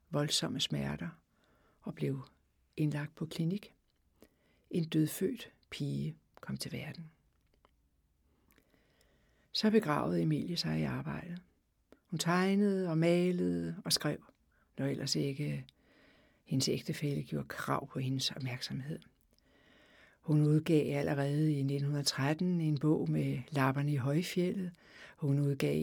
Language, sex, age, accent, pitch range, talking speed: Danish, female, 60-79, native, 145-200 Hz, 110 wpm